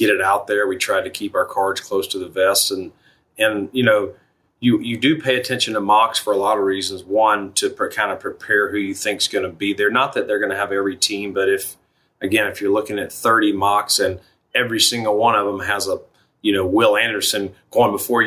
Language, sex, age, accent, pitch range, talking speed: English, male, 30-49, American, 100-130 Hz, 245 wpm